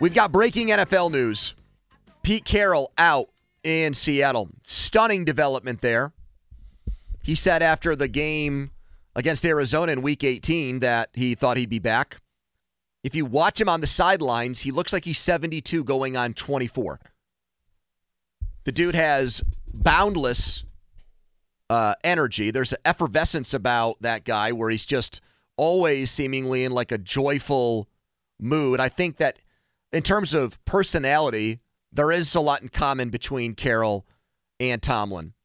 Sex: male